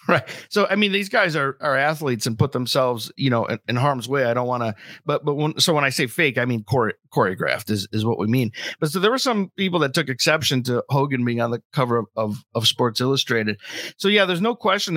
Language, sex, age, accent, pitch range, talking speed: English, male, 50-69, American, 130-170 Hz, 255 wpm